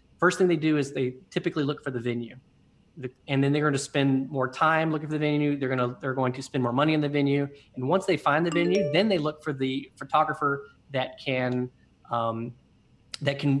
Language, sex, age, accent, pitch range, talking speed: English, male, 30-49, American, 130-160 Hz, 230 wpm